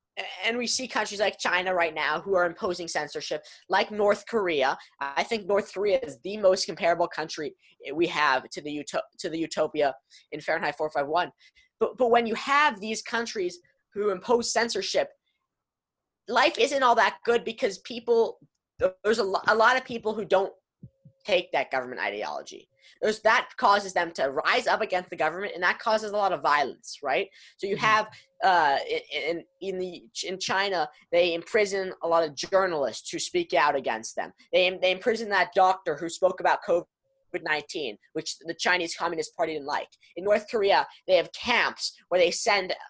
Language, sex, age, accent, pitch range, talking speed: English, female, 20-39, American, 170-245 Hz, 175 wpm